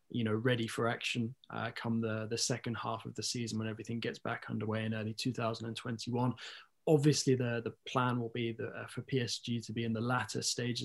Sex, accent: male, British